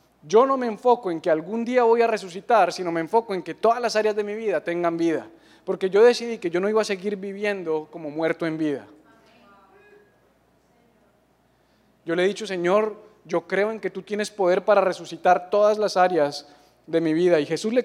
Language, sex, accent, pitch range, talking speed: English, male, Colombian, 170-220 Hz, 205 wpm